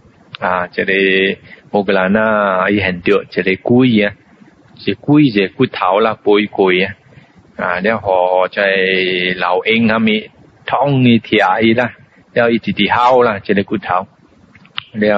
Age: 20-39